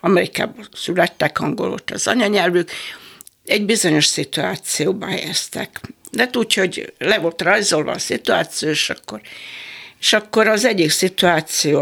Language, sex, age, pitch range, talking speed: Hungarian, female, 60-79, 175-230 Hz, 125 wpm